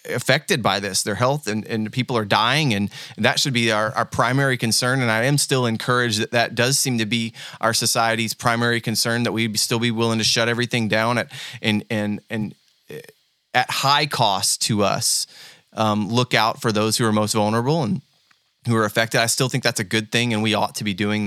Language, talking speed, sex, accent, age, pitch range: English, 220 wpm, male, American, 20-39, 110-125 Hz